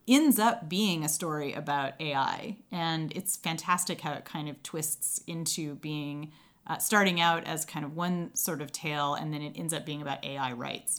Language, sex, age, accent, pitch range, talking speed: English, female, 30-49, American, 150-190 Hz, 195 wpm